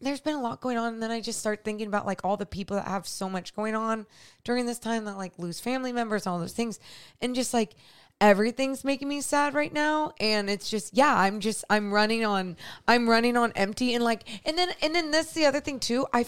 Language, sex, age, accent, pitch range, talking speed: English, female, 20-39, American, 190-235 Hz, 250 wpm